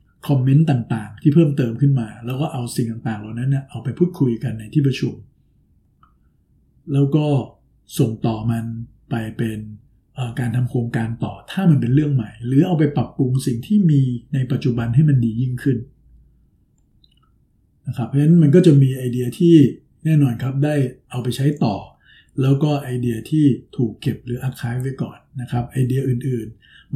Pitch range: 120-140 Hz